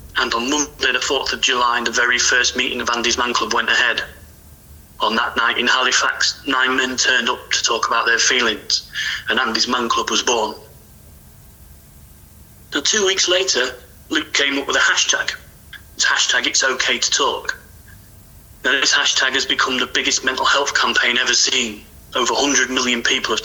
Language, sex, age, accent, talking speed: English, male, 30-49, British, 175 wpm